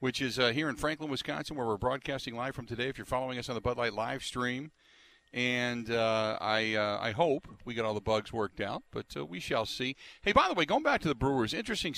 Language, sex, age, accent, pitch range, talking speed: English, male, 50-69, American, 110-130 Hz, 255 wpm